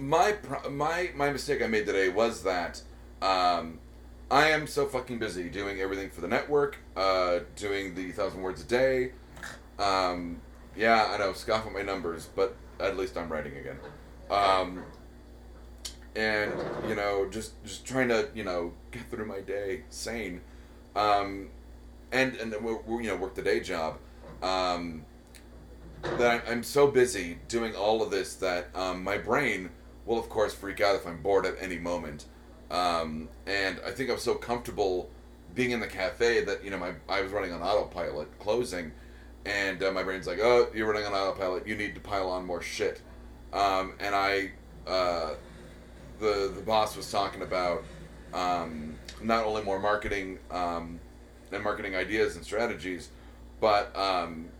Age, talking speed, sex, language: 30-49, 165 wpm, male, English